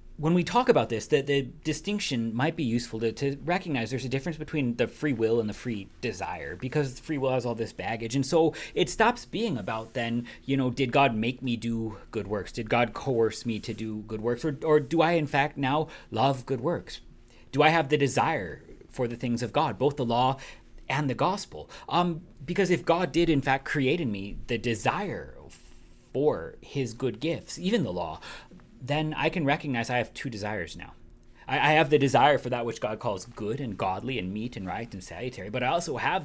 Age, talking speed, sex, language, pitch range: 30-49, 220 wpm, male, English, 115-150 Hz